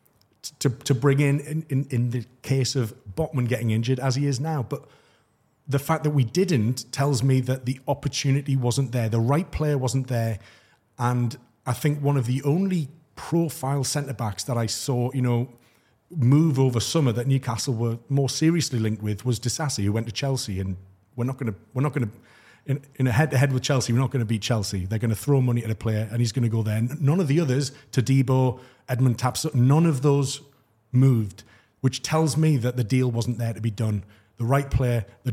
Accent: British